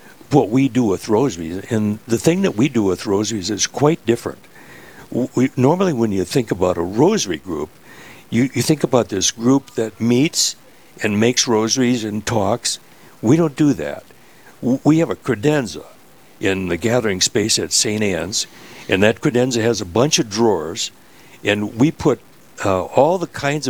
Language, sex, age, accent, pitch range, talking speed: English, male, 60-79, American, 110-140 Hz, 170 wpm